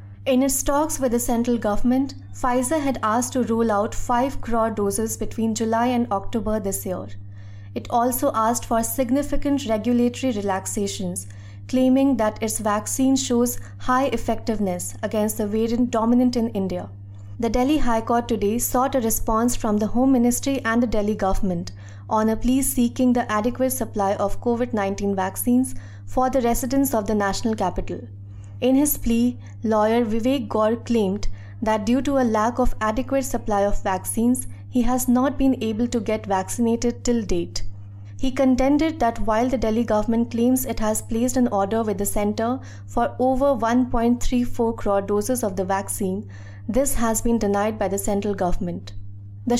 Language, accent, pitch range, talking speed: English, Indian, 200-245 Hz, 165 wpm